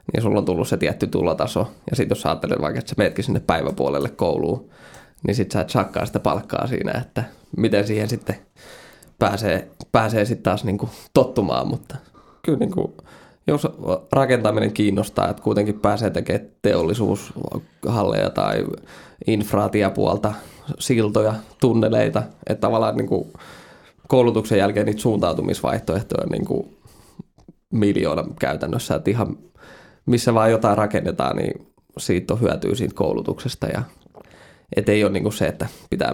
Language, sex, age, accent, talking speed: Finnish, male, 20-39, native, 135 wpm